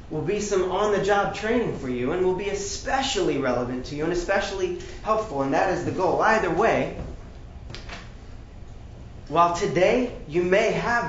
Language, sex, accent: English, male, American